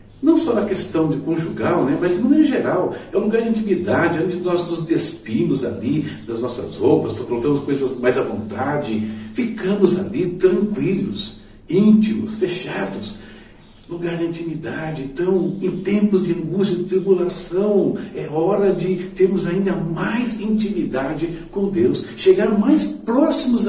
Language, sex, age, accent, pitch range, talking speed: Portuguese, male, 60-79, Brazilian, 145-200 Hz, 145 wpm